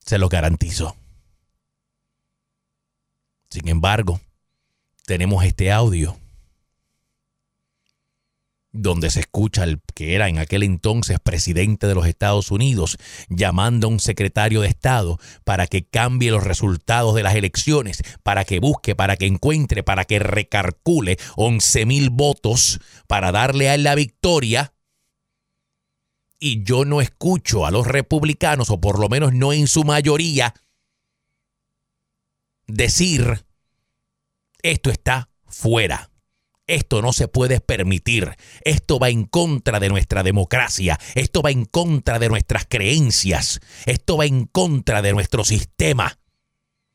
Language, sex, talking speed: Spanish, male, 125 wpm